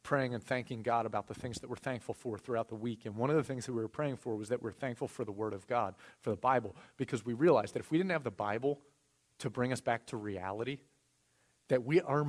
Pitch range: 110-140 Hz